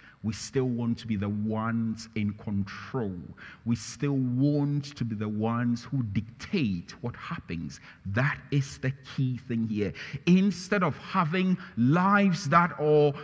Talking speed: 145 wpm